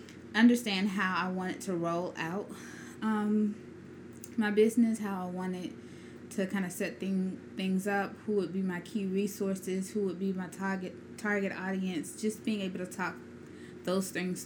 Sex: female